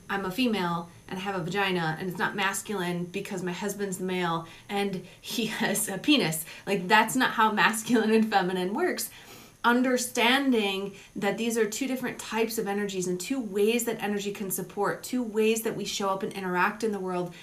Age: 30-49